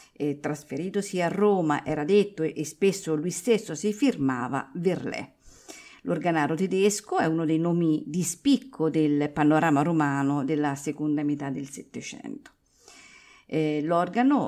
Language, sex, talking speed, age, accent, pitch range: Italian, female, 125 wpm, 50-69, native, 150-190 Hz